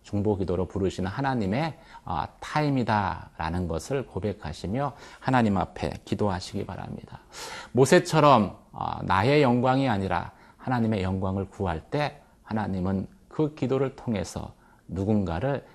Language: Korean